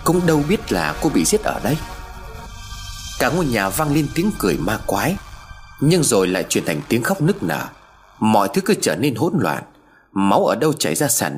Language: Vietnamese